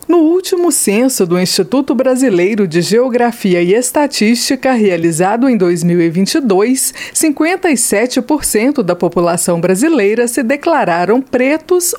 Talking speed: 100 wpm